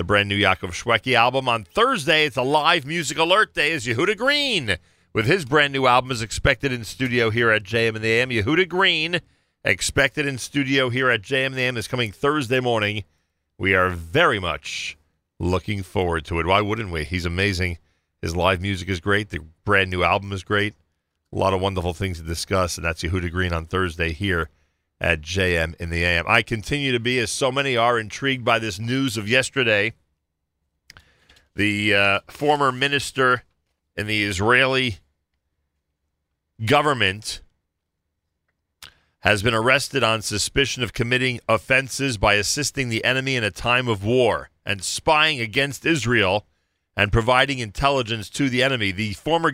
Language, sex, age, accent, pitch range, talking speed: English, male, 40-59, American, 90-130 Hz, 165 wpm